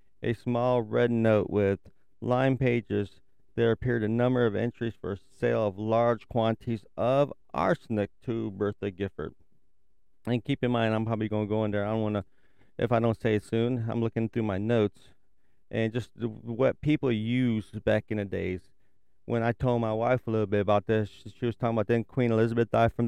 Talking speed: 200 wpm